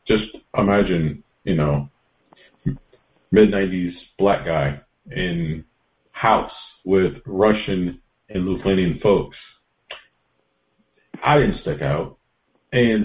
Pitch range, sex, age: 90-115 Hz, male, 40-59